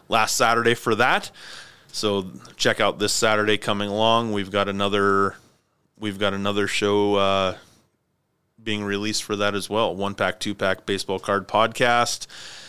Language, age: English, 30-49